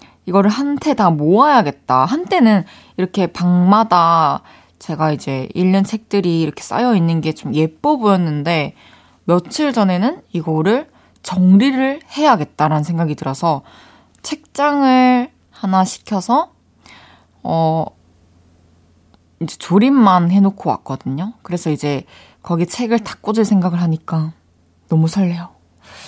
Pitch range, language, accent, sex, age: 165-230 Hz, Korean, native, female, 20-39